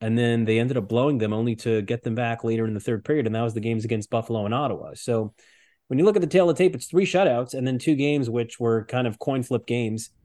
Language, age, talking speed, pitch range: English, 30-49, 295 wpm, 100-125 Hz